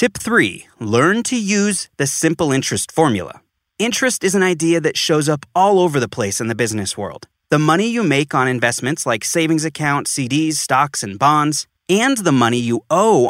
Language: English